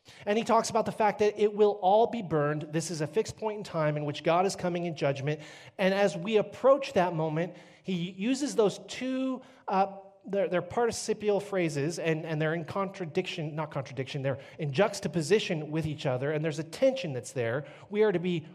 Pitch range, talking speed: 165-240 Hz, 205 wpm